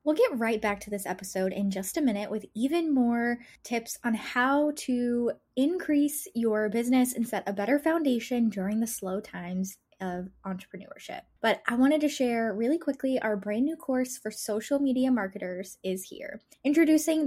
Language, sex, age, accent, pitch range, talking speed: English, female, 10-29, American, 210-285 Hz, 175 wpm